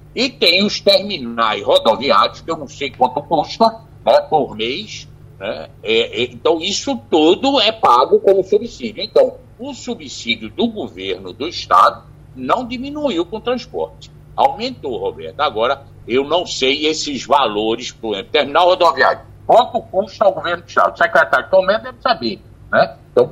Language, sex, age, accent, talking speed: Portuguese, male, 60-79, Brazilian, 155 wpm